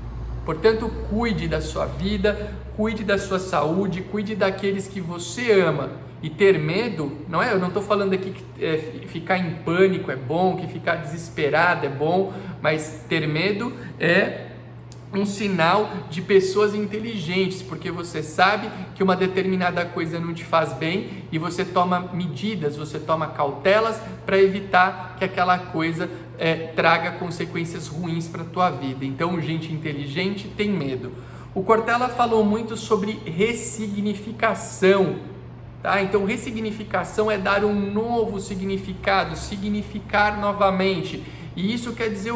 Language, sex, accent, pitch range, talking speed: Portuguese, male, Brazilian, 165-205 Hz, 140 wpm